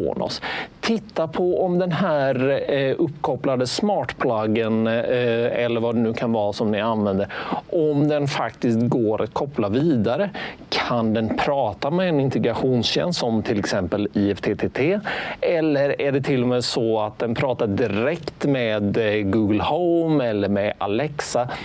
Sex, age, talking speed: male, 40-59, 140 wpm